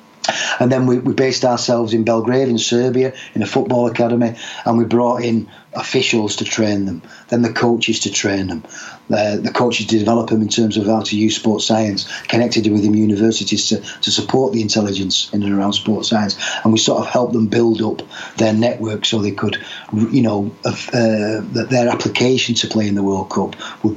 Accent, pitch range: British, 105-120 Hz